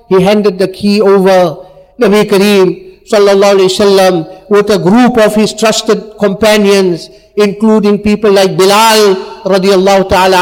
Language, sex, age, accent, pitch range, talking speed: English, male, 50-69, Indian, 190-225 Hz, 140 wpm